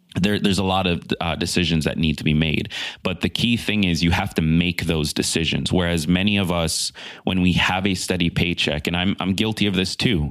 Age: 30-49